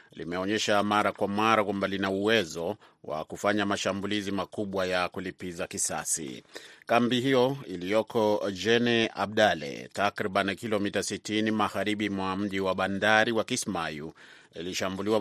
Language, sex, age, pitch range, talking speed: Swahili, male, 30-49, 95-110 Hz, 115 wpm